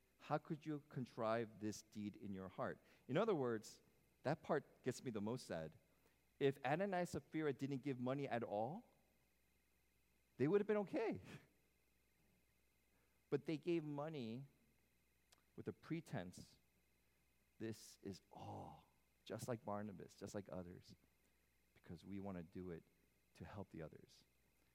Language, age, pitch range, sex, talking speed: English, 40-59, 80-120 Hz, male, 145 wpm